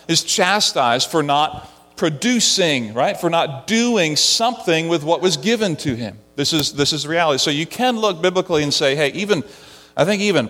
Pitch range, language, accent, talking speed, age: 150-200 Hz, English, American, 190 wpm, 40-59